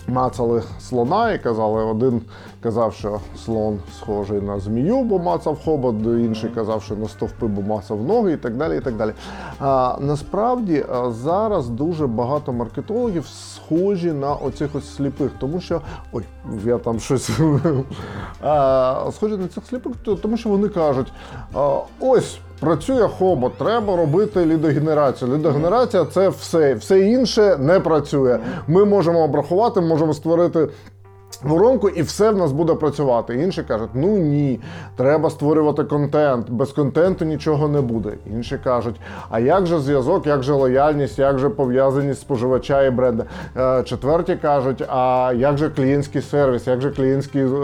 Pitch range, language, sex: 120-160 Hz, Ukrainian, male